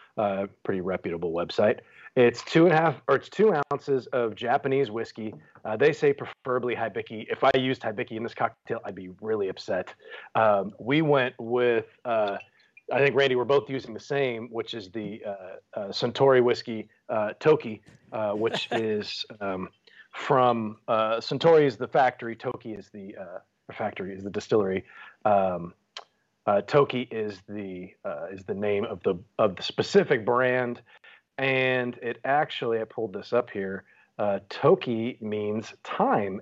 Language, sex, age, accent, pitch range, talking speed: English, male, 30-49, American, 105-130 Hz, 165 wpm